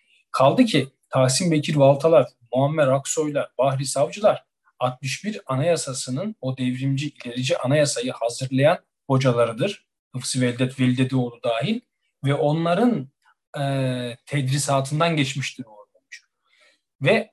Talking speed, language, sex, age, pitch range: 90 wpm, Turkish, male, 40-59, 130-165 Hz